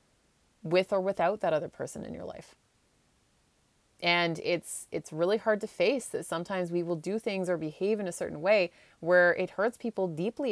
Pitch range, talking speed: 165-200 Hz, 190 wpm